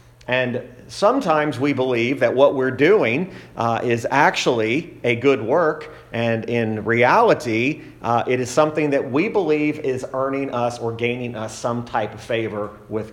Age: 40-59